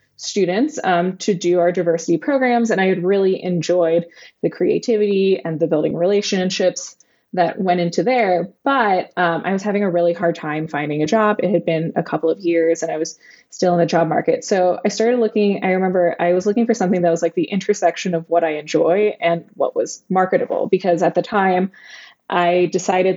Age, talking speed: 20-39, 205 wpm